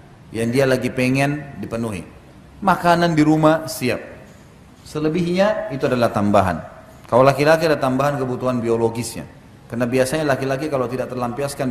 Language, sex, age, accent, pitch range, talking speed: Indonesian, male, 30-49, native, 115-140 Hz, 130 wpm